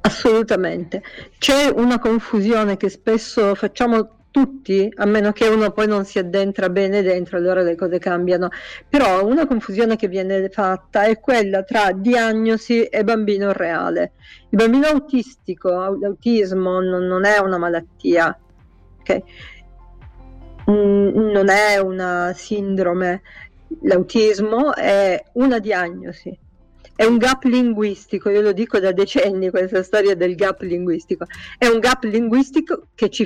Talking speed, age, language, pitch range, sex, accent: 130 wpm, 40-59, Italian, 185-225 Hz, female, native